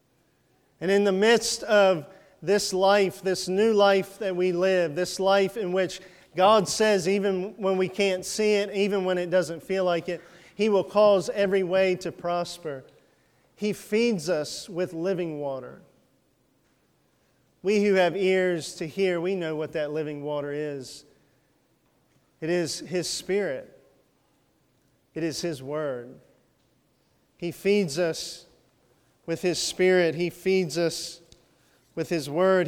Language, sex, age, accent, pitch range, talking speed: English, male, 40-59, American, 155-190 Hz, 145 wpm